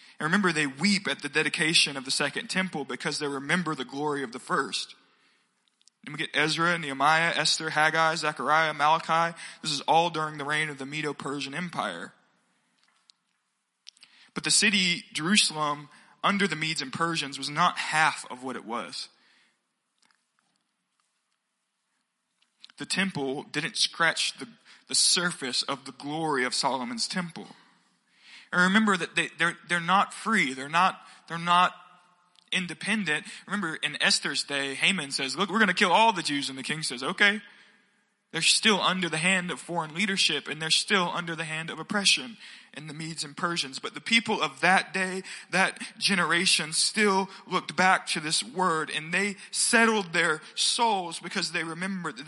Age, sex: 20-39, male